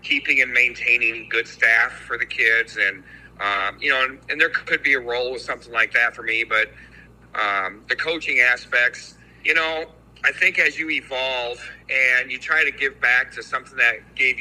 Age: 40-59